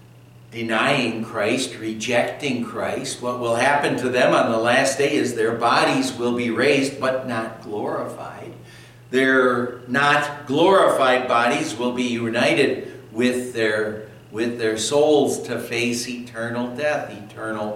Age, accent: 60-79, American